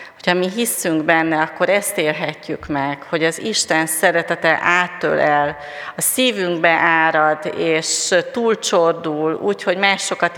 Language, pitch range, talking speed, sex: Hungarian, 160-190 Hz, 115 wpm, female